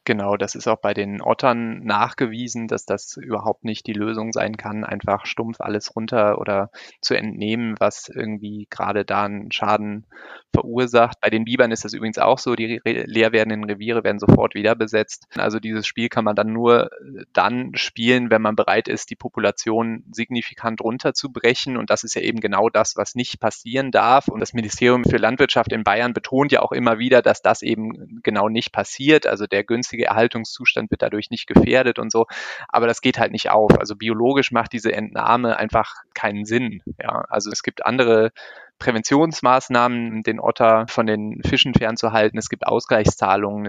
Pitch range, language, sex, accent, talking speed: 105-120 Hz, German, male, German, 180 wpm